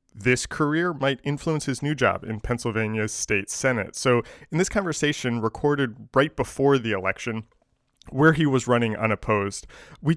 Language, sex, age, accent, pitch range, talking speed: English, male, 20-39, American, 110-145 Hz, 155 wpm